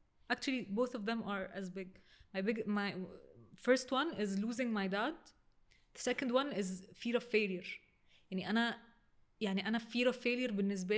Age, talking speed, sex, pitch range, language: 20-39, 170 wpm, female, 200-245 Hz, Arabic